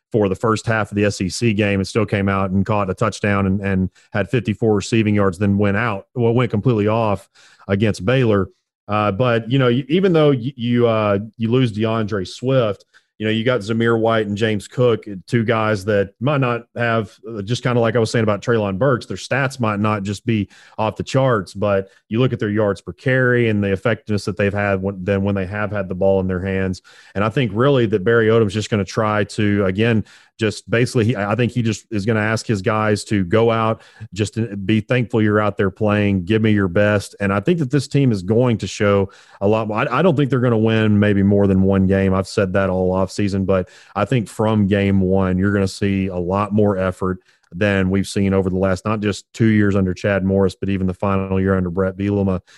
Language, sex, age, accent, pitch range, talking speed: English, male, 40-59, American, 100-115 Hz, 240 wpm